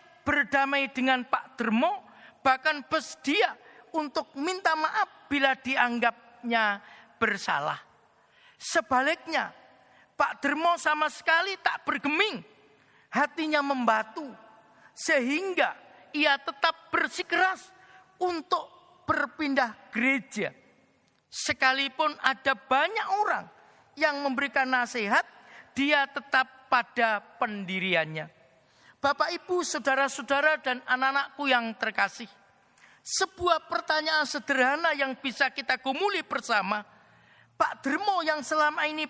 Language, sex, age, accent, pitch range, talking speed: Indonesian, male, 40-59, native, 245-315 Hz, 90 wpm